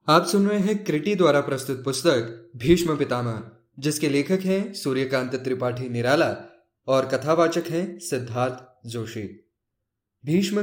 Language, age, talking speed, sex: English, 20-39, 125 wpm, male